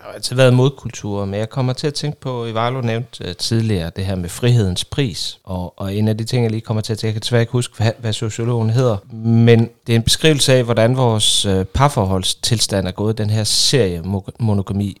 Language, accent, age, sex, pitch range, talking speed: Danish, native, 30-49, male, 100-125 Hz, 250 wpm